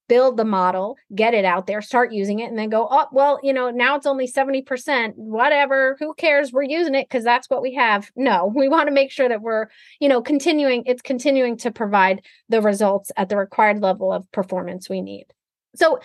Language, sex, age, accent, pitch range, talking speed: English, female, 30-49, American, 200-275 Hz, 215 wpm